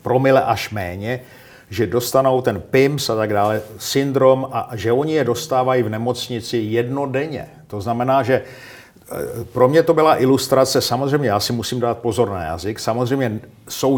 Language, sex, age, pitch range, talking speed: Czech, male, 50-69, 115-135 Hz, 160 wpm